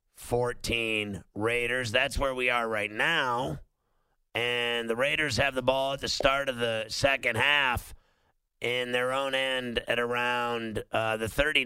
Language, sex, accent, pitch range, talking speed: English, male, American, 110-130 Hz, 155 wpm